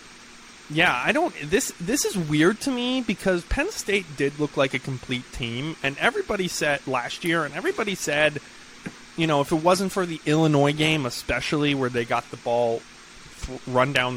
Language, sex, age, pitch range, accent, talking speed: English, male, 20-39, 120-160 Hz, American, 180 wpm